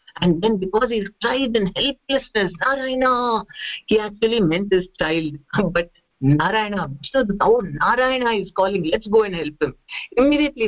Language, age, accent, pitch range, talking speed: English, 50-69, Indian, 170-230 Hz, 140 wpm